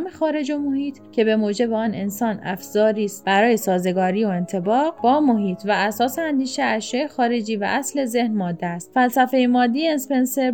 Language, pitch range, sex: Persian, 210-260 Hz, female